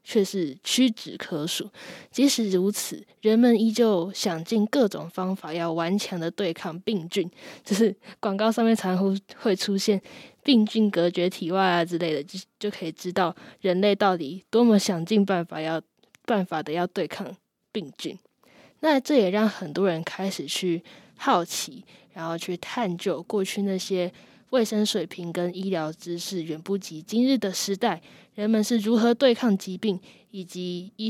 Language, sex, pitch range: Chinese, female, 180-225 Hz